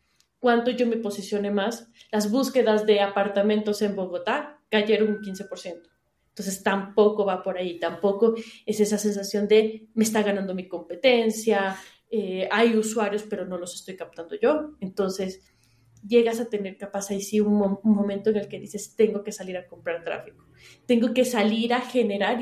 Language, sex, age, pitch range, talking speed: Spanish, female, 20-39, 200-230 Hz, 170 wpm